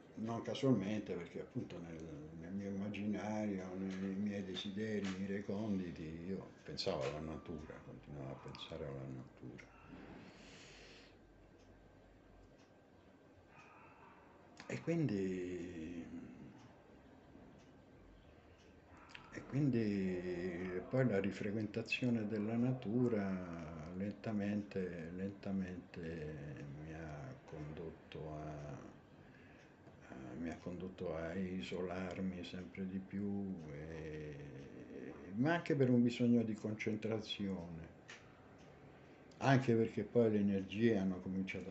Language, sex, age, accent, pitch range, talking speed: Italian, male, 60-79, native, 90-105 Hz, 85 wpm